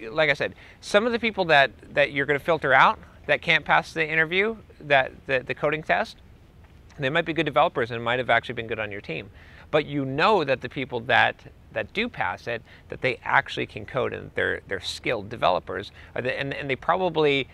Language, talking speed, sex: English, 210 wpm, male